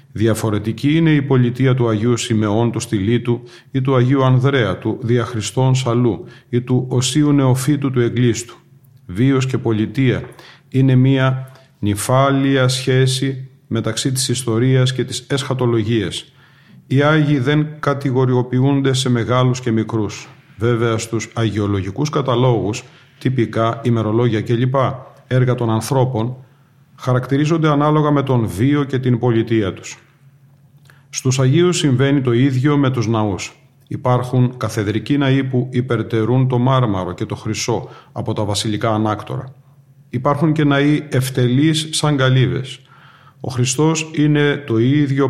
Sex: male